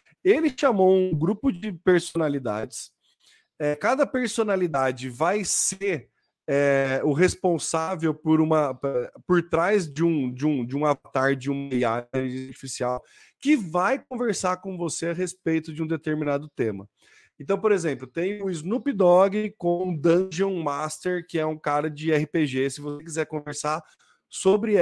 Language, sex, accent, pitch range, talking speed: Portuguese, male, Brazilian, 150-195 Hz, 135 wpm